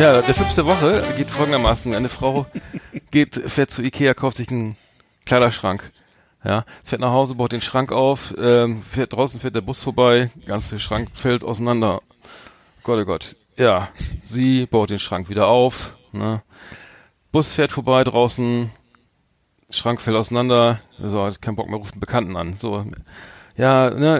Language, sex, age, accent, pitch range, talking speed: German, male, 40-59, German, 115-140 Hz, 165 wpm